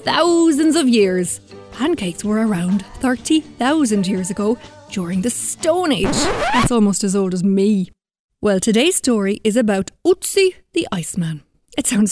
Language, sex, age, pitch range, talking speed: English, female, 30-49, 195-285 Hz, 145 wpm